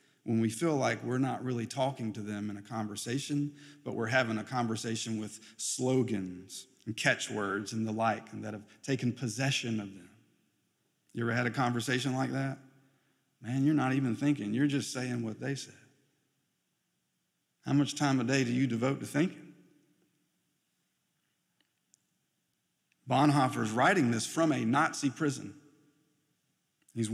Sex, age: male, 50-69